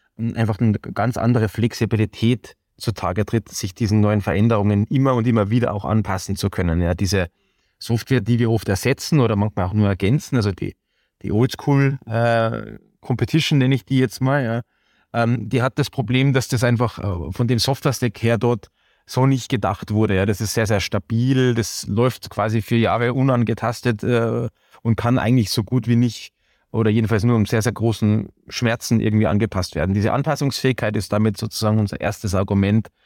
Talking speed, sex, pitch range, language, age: 180 wpm, male, 100-120 Hz, German, 20-39